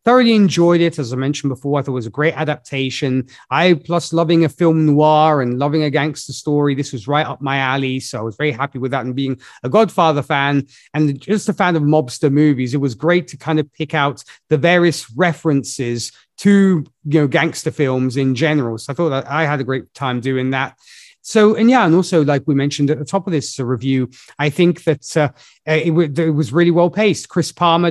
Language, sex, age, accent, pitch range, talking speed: English, male, 30-49, British, 135-185 Hz, 225 wpm